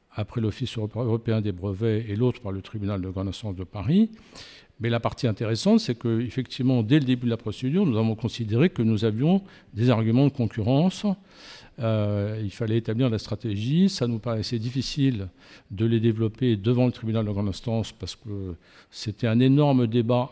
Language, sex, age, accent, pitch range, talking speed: French, male, 50-69, French, 105-130 Hz, 185 wpm